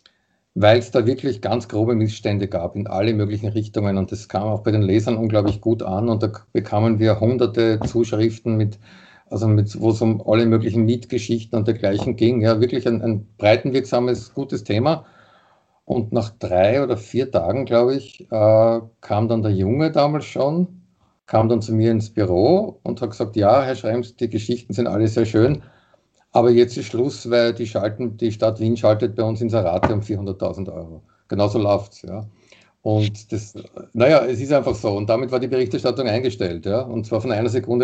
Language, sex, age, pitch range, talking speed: German, male, 50-69, 105-125 Hz, 190 wpm